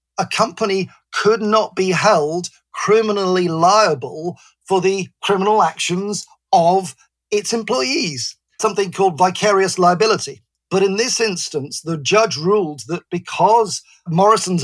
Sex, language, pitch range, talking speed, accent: male, English, 175-205 Hz, 120 wpm, British